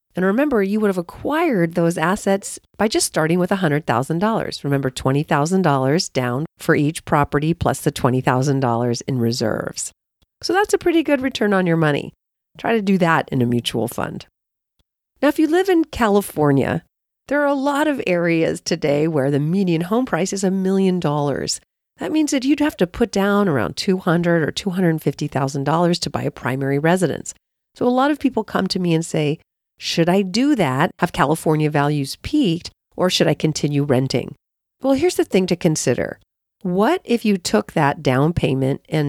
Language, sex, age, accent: English, female, 40-59, American